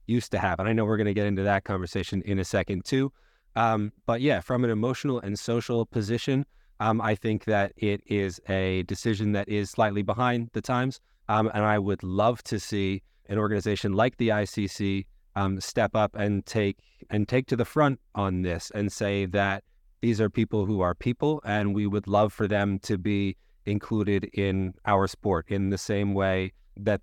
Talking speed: 200 wpm